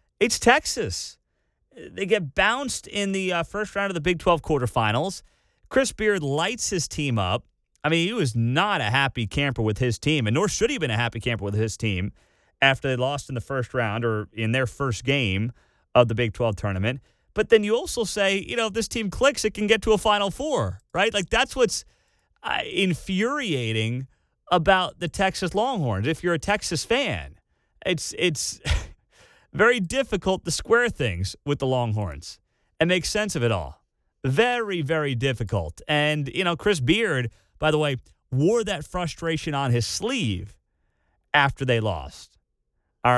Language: English